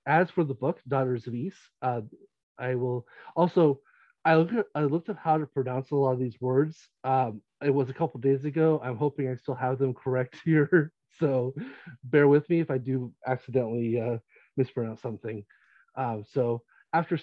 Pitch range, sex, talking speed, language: 125-150 Hz, male, 190 wpm, English